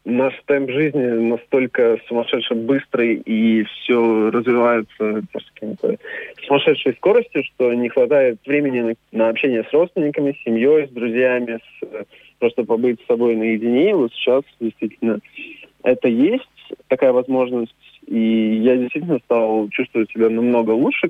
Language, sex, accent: Russian, male, native